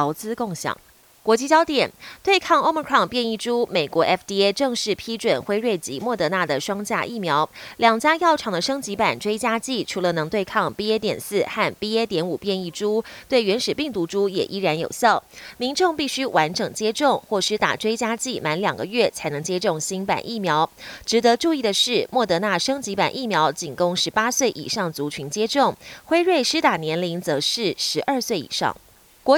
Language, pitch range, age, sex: Chinese, 175-245 Hz, 30-49, female